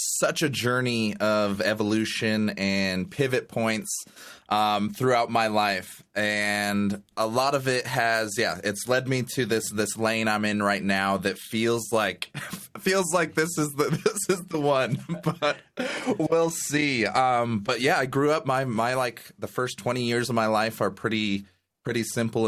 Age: 20-39